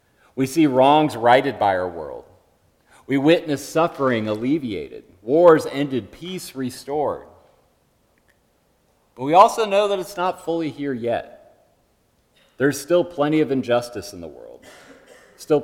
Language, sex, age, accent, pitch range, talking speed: English, male, 40-59, American, 120-150 Hz, 130 wpm